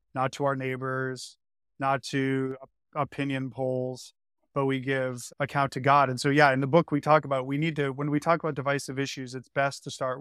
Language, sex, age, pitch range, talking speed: English, male, 30-49, 130-145 Hz, 210 wpm